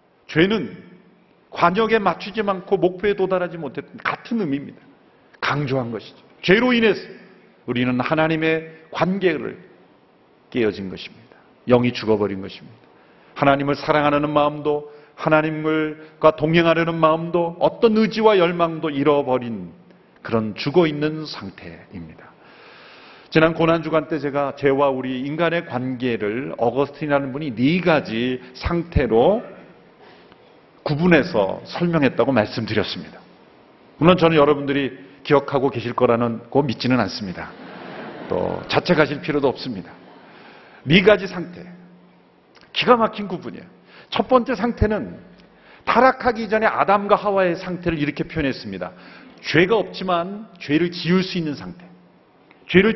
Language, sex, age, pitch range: Korean, male, 40-59, 140-190 Hz